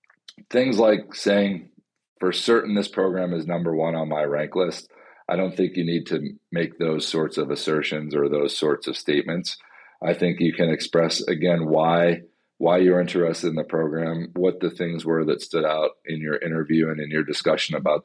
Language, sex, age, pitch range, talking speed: English, male, 40-59, 75-90 Hz, 195 wpm